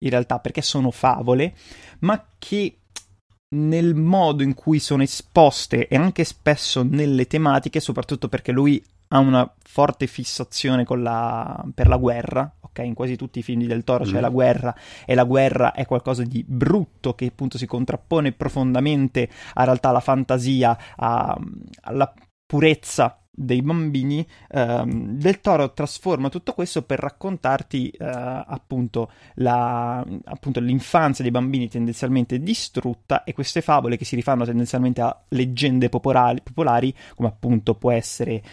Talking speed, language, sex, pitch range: 150 wpm, Italian, male, 120-145 Hz